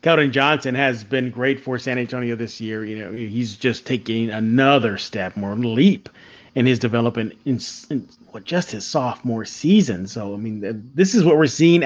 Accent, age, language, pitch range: American, 30-49, English, 120-155 Hz